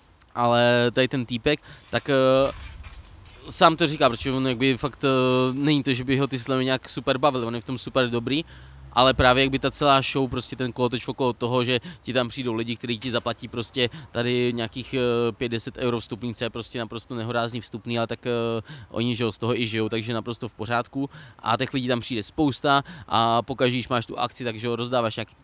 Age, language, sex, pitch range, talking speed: 20-39, Slovak, male, 115-130 Hz, 210 wpm